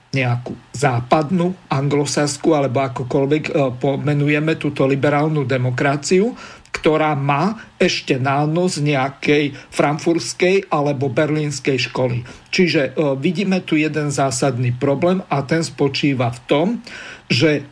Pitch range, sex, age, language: 140-175 Hz, male, 50-69, Slovak